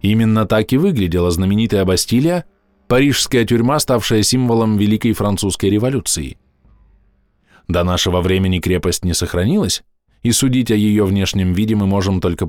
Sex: male